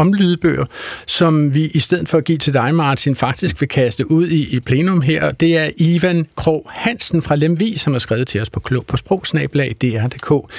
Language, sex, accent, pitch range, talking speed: Danish, male, native, 130-160 Hz, 205 wpm